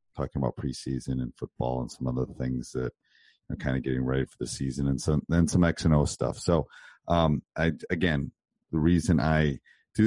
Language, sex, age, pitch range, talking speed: English, male, 40-59, 70-80 Hz, 205 wpm